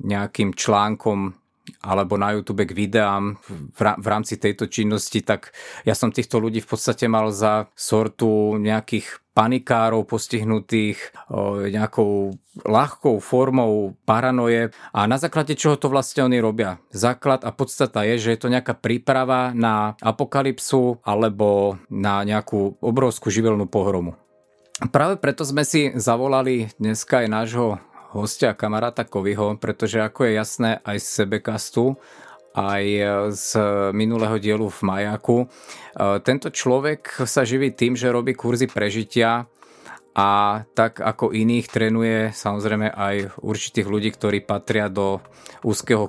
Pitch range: 105-120 Hz